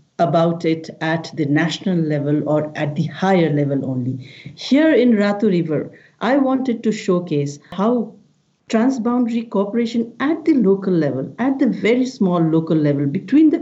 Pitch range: 160-220 Hz